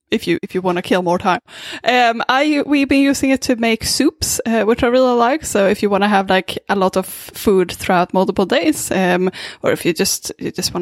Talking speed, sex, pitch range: 250 wpm, female, 195-255 Hz